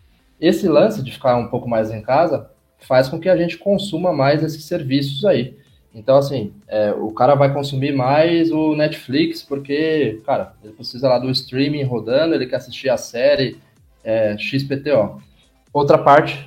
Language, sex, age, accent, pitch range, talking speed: Portuguese, male, 20-39, Brazilian, 120-155 Hz, 160 wpm